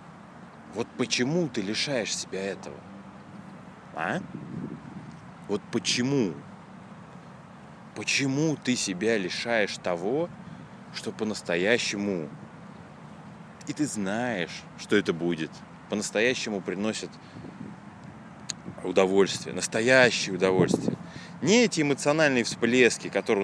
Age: 20-39